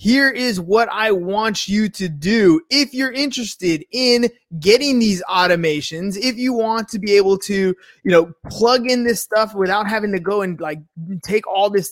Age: 20-39